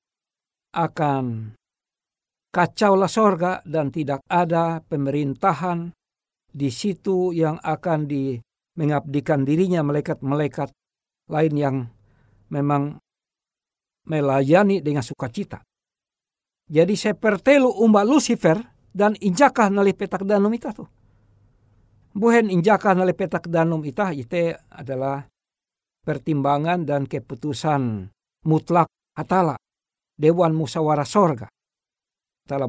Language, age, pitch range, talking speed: Indonesian, 60-79, 145-200 Hz, 90 wpm